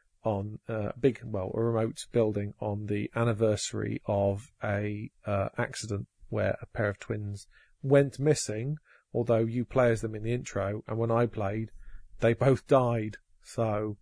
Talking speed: 160 wpm